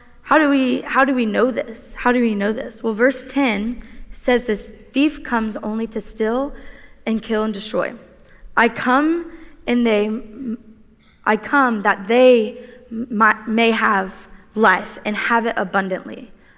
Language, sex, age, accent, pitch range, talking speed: English, female, 20-39, American, 215-260 Hz, 150 wpm